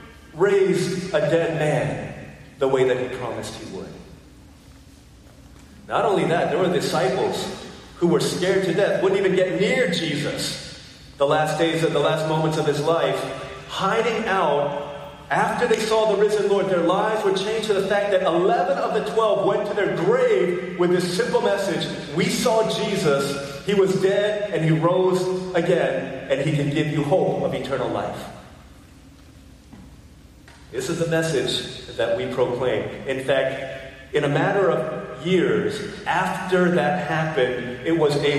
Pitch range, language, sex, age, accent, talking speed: 150-195 Hz, English, male, 40-59, American, 160 wpm